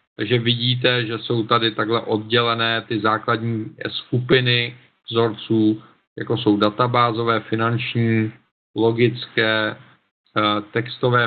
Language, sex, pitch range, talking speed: Czech, male, 110-125 Hz, 90 wpm